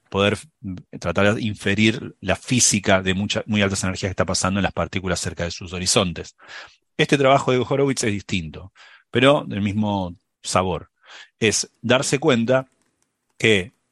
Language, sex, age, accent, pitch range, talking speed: Spanish, male, 40-59, Argentinian, 90-120 Hz, 150 wpm